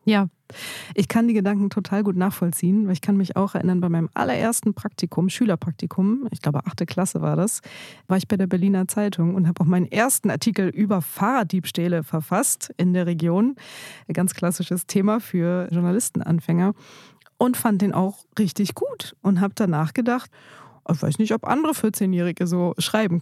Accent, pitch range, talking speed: German, 175-205 Hz, 175 wpm